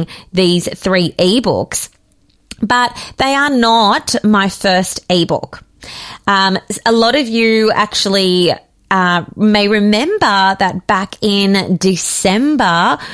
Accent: Australian